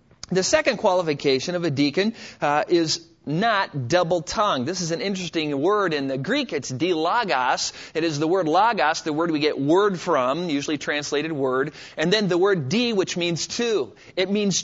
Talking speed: 180 wpm